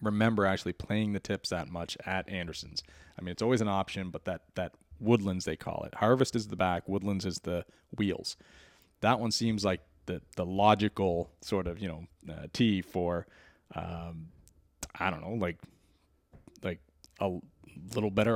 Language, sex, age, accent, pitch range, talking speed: English, male, 30-49, American, 85-110 Hz, 175 wpm